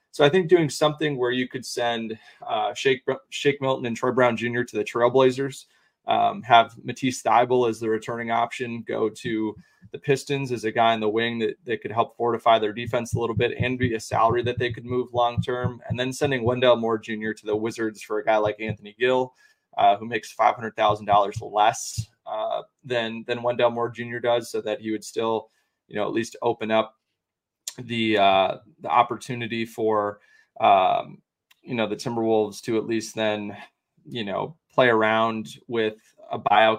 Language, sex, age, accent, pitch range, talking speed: English, male, 20-39, American, 110-125 Hz, 190 wpm